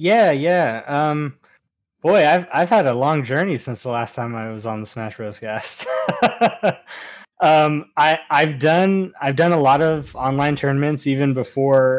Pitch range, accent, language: 115-135 Hz, American, English